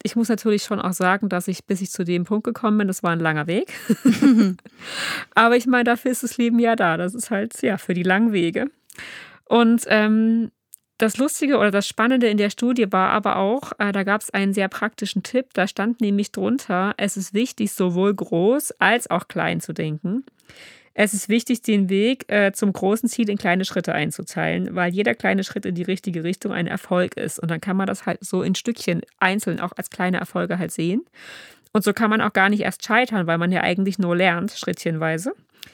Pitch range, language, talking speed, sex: 185-230 Hz, German, 215 wpm, female